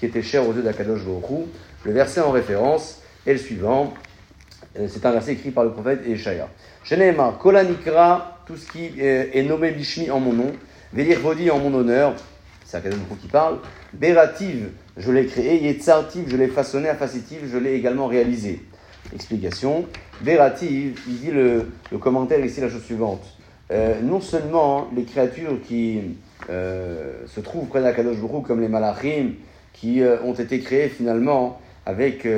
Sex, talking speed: male, 155 wpm